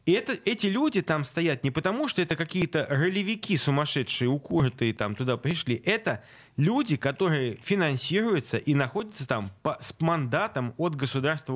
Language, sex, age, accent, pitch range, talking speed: Russian, male, 30-49, native, 125-185 Hz, 145 wpm